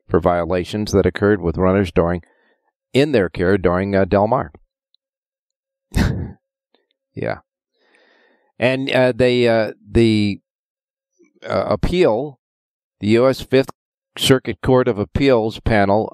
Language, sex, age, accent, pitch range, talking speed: English, male, 50-69, American, 95-140 Hz, 110 wpm